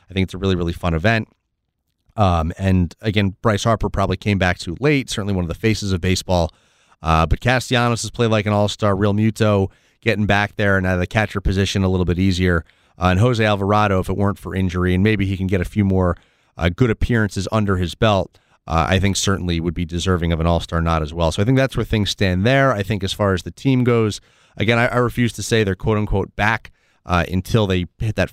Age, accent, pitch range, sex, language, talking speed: 30-49, American, 90-110 Hz, male, English, 240 wpm